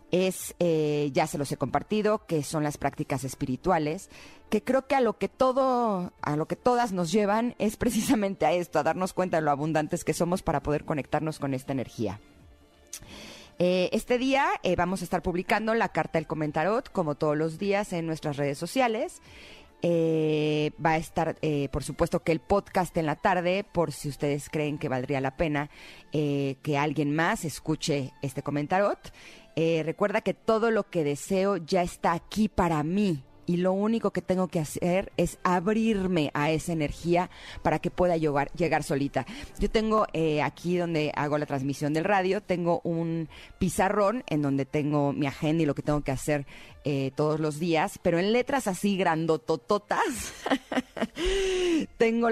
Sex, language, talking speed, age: female, Spanish, 180 wpm, 30-49